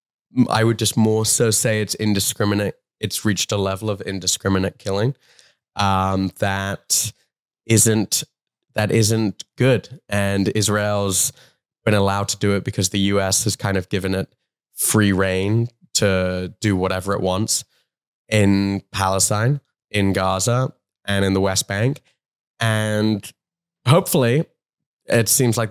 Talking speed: 135 wpm